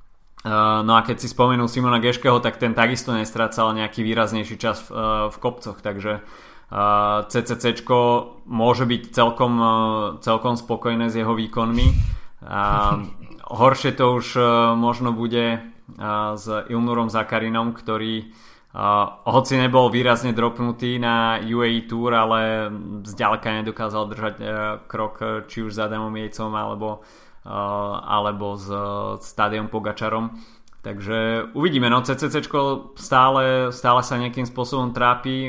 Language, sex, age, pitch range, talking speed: Slovak, male, 20-39, 110-120 Hz, 130 wpm